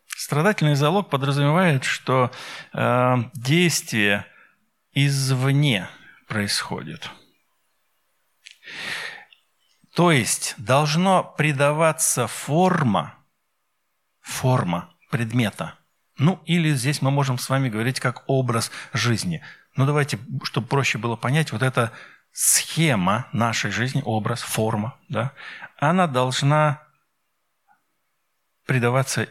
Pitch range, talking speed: 125-165 Hz, 90 wpm